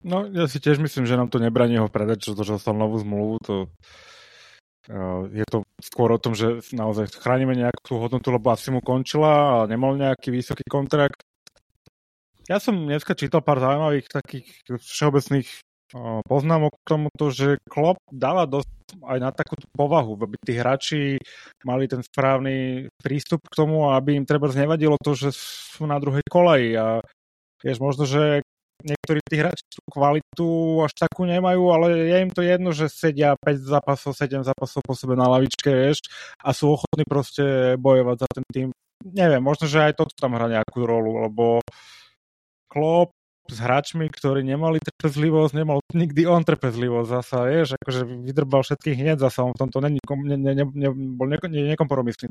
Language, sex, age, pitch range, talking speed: Slovak, male, 20-39, 125-155 Hz, 170 wpm